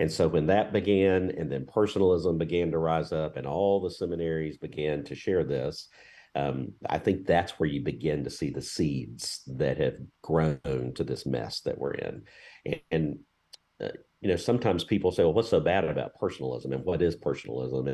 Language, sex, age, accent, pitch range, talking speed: English, male, 50-69, American, 70-90 Hz, 195 wpm